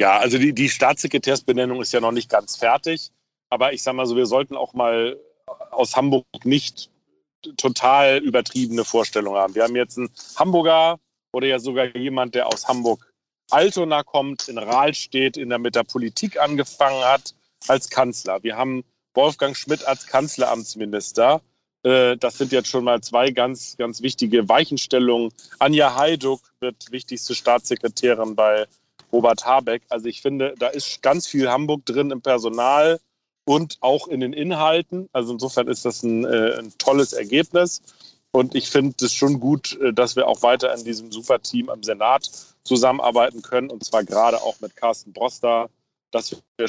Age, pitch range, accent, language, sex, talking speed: 40-59, 115-135 Hz, German, German, male, 160 wpm